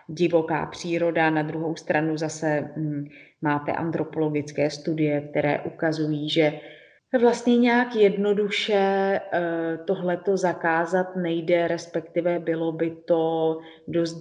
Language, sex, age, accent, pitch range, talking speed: Czech, female, 30-49, native, 150-165 Hz, 95 wpm